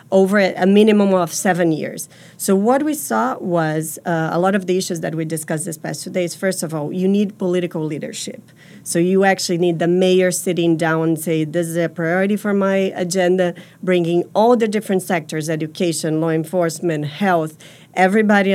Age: 40-59